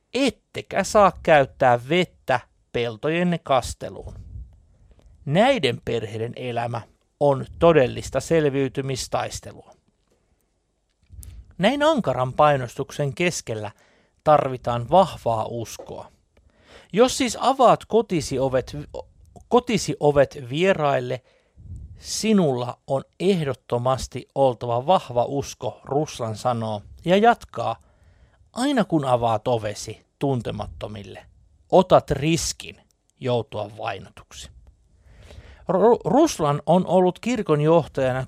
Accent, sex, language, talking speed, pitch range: native, male, Finnish, 80 wpm, 115-170 Hz